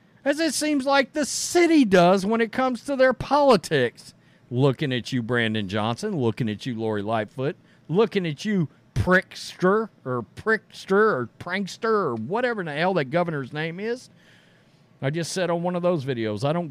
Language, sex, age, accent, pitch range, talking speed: English, male, 50-69, American, 155-205 Hz, 175 wpm